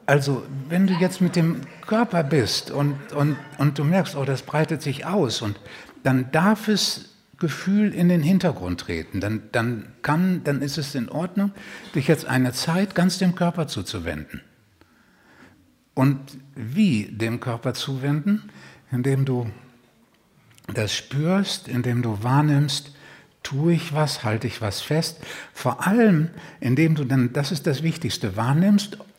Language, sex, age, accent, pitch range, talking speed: German, male, 60-79, German, 120-175 Hz, 150 wpm